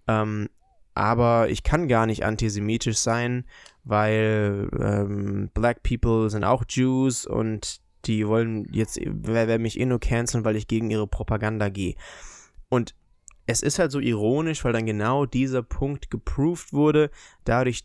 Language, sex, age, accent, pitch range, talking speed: German, male, 20-39, German, 105-125 Hz, 150 wpm